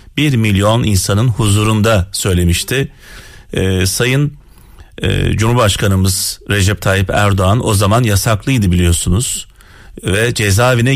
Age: 40-59